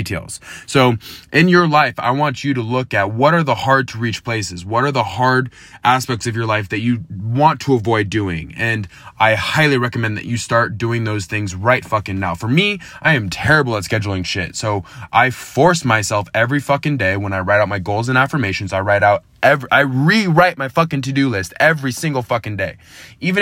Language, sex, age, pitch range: English, male, 20-39, 105-135 Hz